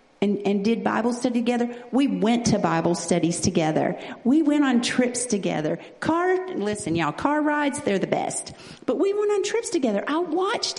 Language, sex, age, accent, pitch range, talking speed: English, female, 50-69, American, 200-280 Hz, 185 wpm